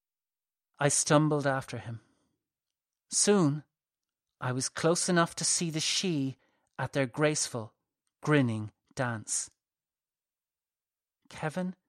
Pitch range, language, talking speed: 135-170 Hz, English, 95 wpm